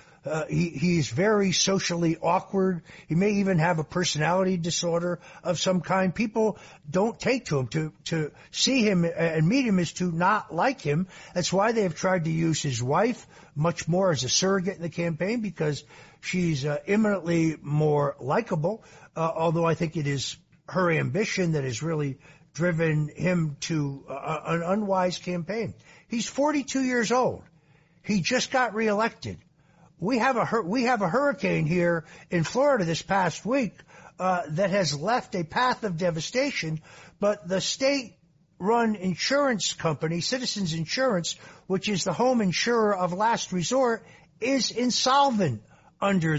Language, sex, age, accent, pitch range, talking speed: English, male, 60-79, American, 160-215 Hz, 160 wpm